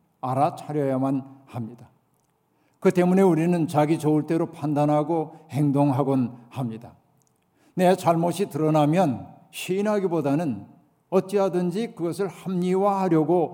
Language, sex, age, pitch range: Korean, male, 50-69, 145-175 Hz